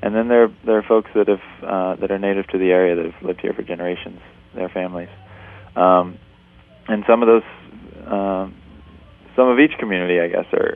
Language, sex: English, male